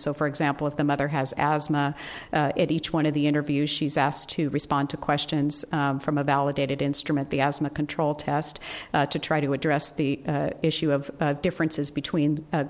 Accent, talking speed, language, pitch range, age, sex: American, 205 wpm, English, 150-180 Hz, 50-69, female